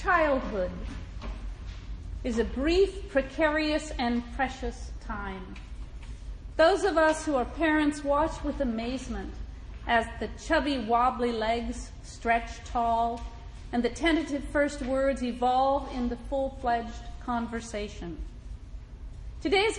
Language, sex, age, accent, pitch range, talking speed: English, female, 40-59, American, 235-305 Hz, 105 wpm